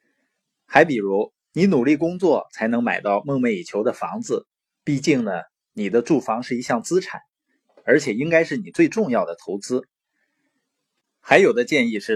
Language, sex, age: Chinese, male, 20-39